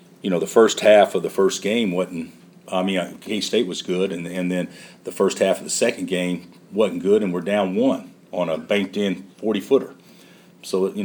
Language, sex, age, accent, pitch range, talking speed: English, male, 50-69, American, 85-100 Hz, 205 wpm